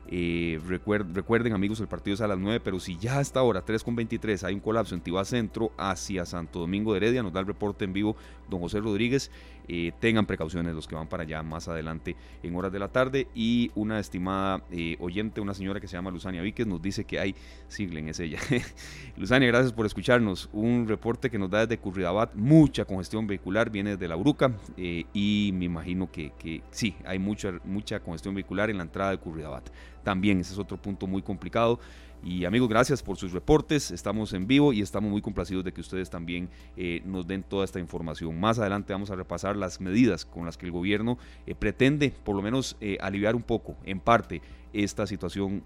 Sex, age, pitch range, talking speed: male, 30-49, 85-105 Hz, 215 wpm